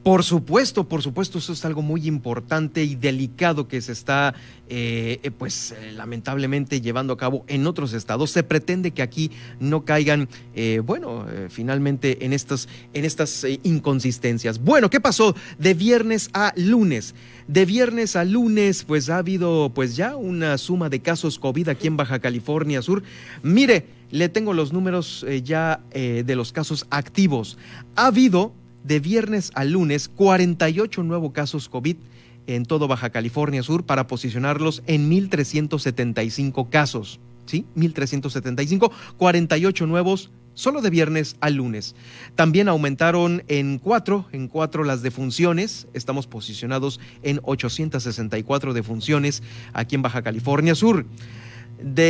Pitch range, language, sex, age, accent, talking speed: 125-170 Hz, Spanish, male, 40-59, Mexican, 145 wpm